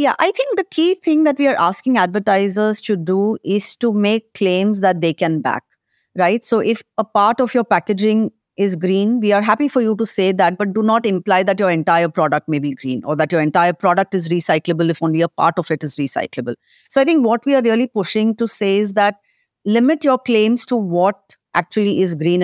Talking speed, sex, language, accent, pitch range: 225 wpm, female, English, Indian, 175-230 Hz